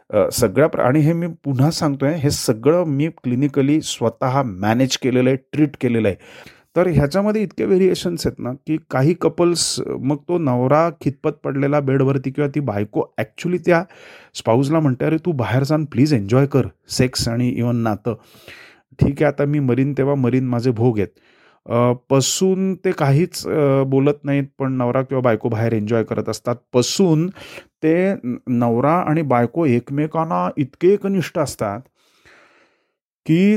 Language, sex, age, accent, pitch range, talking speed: Marathi, male, 30-49, native, 125-170 Hz, 140 wpm